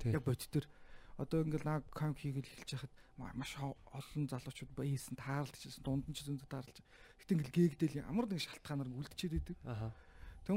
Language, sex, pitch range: Korean, male, 130-175 Hz